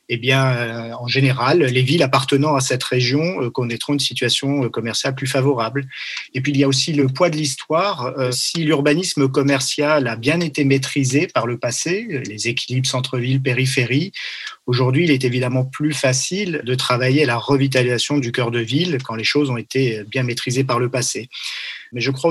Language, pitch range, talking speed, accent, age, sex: French, 125-150 Hz, 195 wpm, French, 40-59, male